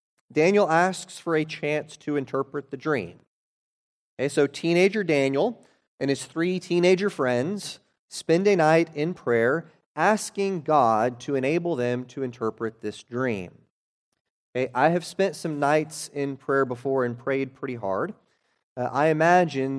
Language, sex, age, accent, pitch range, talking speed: English, male, 30-49, American, 135-185 Hz, 140 wpm